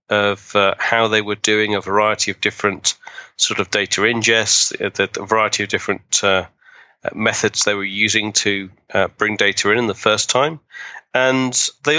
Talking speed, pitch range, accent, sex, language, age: 165 wpm, 100-115 Hz, British, male, English, 30-49